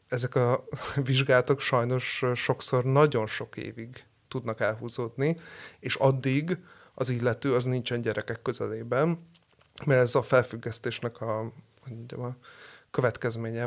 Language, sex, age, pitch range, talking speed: Hungarian, male, 30-49, 115-135 Hz, 115 wpm